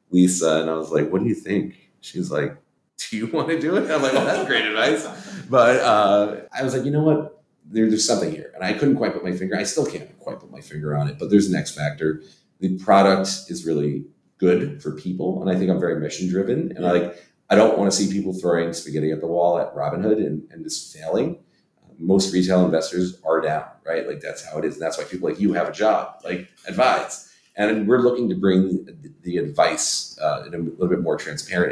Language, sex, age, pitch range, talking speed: English, male, 40-59, 80-105 Hz, 240 wpm